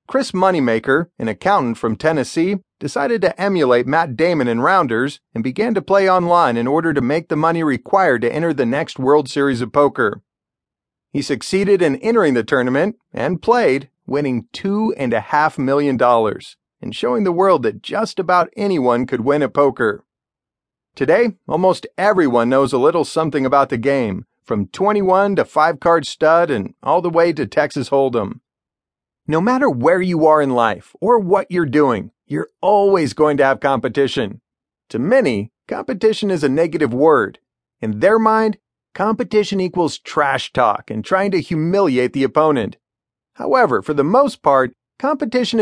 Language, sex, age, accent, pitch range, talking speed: English, male, 40-59, American, 140-200 Hz, 160 wpm